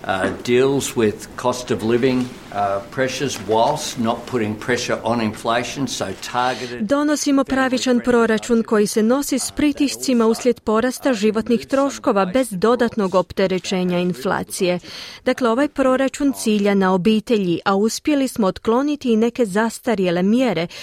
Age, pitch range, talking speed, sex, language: 40-59, 180-250 Hz, 105 wpm, female, Croatian